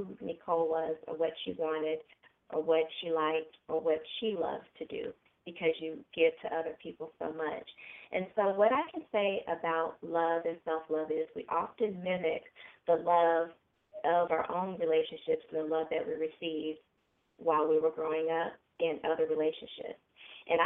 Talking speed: 175 wpm